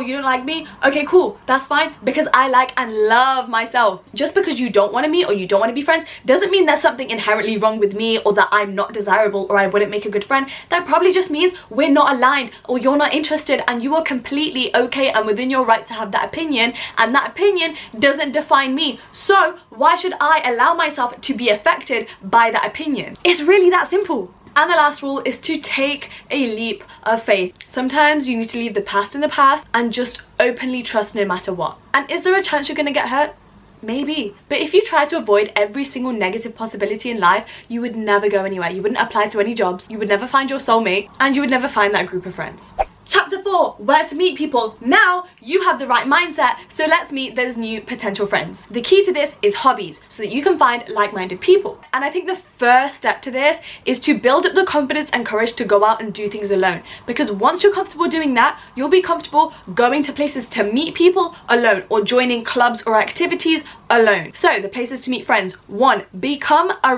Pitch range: 220-305 Hz